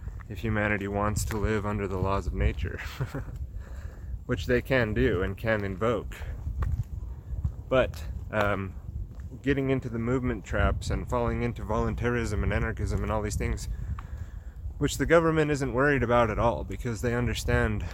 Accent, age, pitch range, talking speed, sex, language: American, 30-49, 90-115 Hz, 150 wpm, male, English